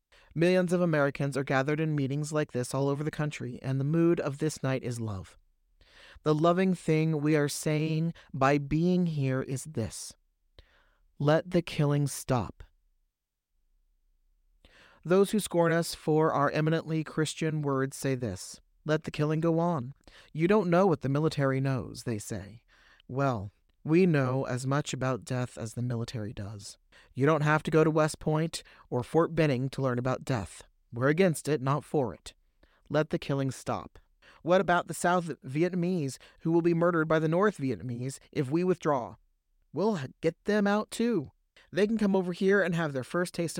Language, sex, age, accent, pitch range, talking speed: English, male, 40-59, American, 125-165 Hz, 175 wpm